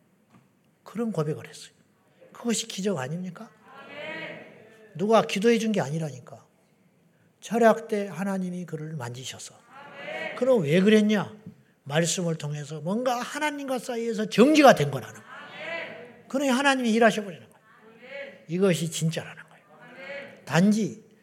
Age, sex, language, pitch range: 40-59, male, Korean, 170-220 Hz